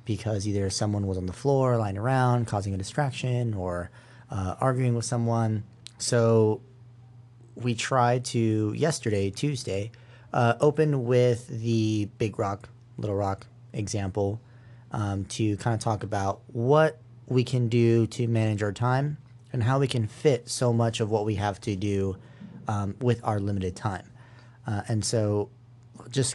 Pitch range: 105-120 Hz